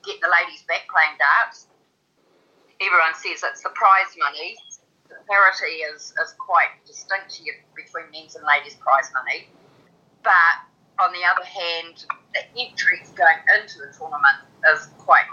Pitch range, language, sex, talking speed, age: 155-240 Hz, English, female, 145 wpm, 30-49